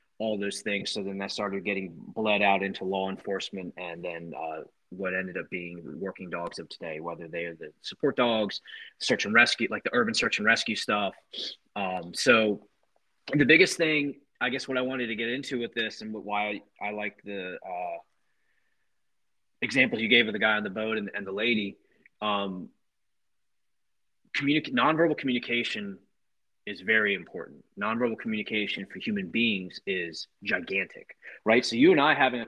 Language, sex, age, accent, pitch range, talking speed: English, male, 30-49, American, 100-125 Hz, 175 wpm